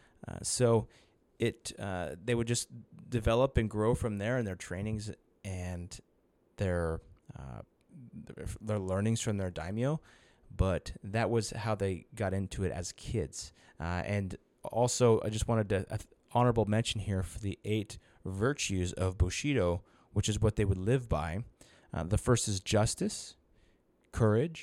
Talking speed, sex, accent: 155 wpm, male, American